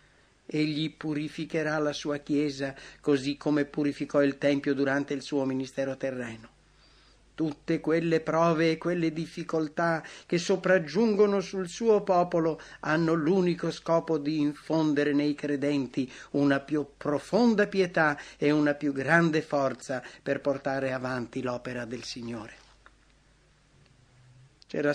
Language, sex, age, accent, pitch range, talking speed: English, male, 50-69, Italian, 135-170 Hz, 120 wpm